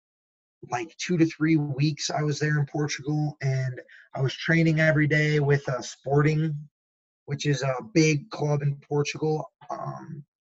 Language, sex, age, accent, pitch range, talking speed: English, male, 20-39, American, 135-155 Hz, 155 wpm